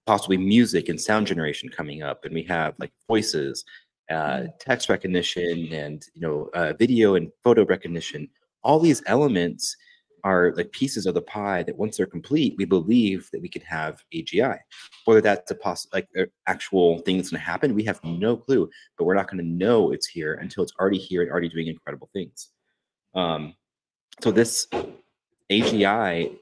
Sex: male